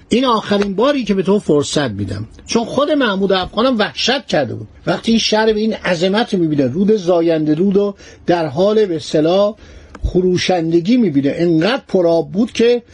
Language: Persian